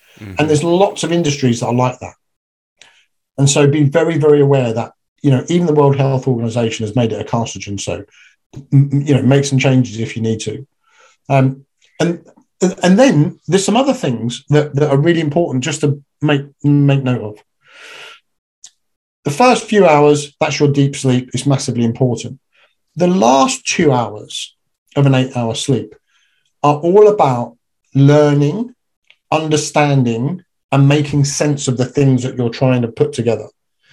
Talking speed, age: 165 wpm, 50-69